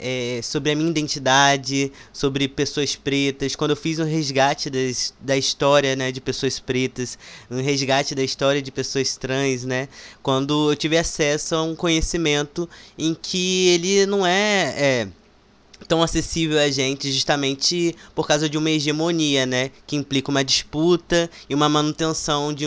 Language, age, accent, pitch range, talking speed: Portuguese, 20-39, Brazilian, 135-155 Hz, 160 wpm